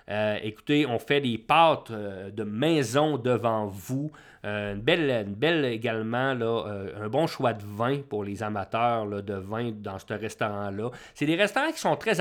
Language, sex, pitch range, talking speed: English, male, 115-150 Hz, 190 wpm